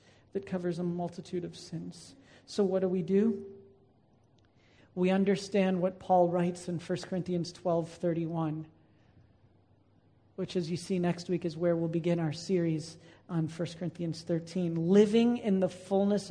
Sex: male